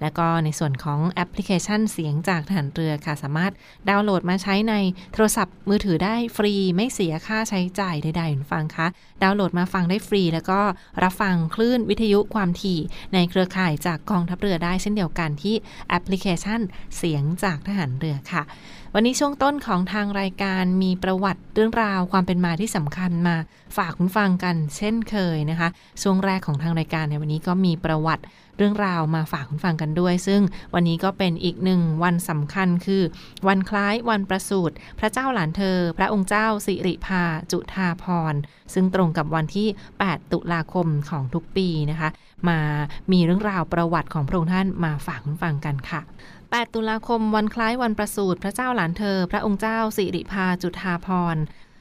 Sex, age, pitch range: female, 20-39, 165-200 Hz